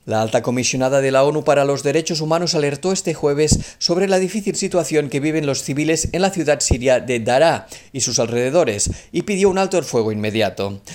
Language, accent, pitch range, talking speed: Spanish, Spanish, 120-155 Hz, 205 wpm